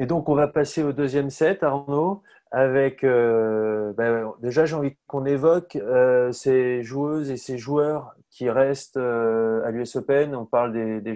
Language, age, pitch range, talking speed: French, 20-39, 115-140 Hz, 175 wpm